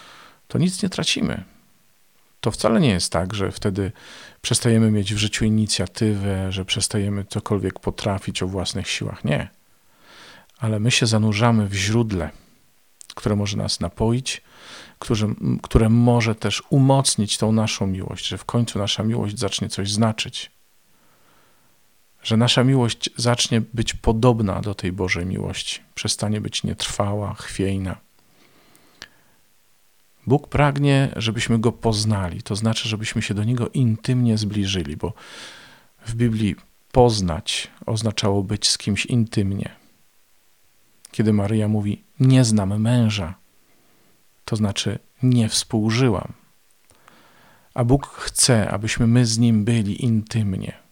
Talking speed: 125 wpm